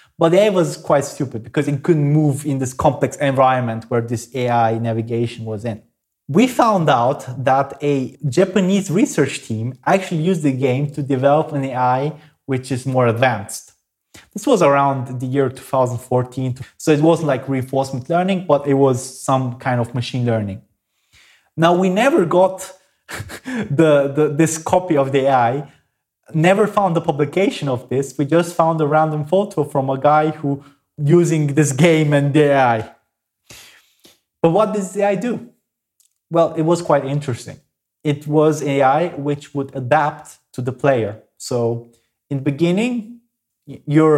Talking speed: 160 wpm